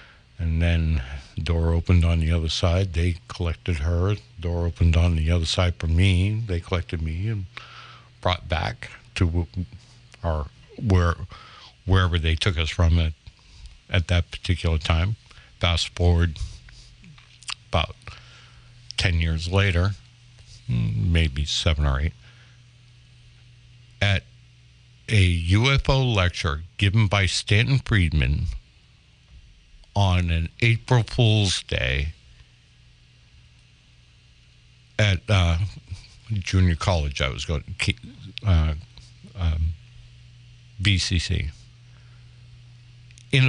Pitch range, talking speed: 85-120 Hz, 105 wpm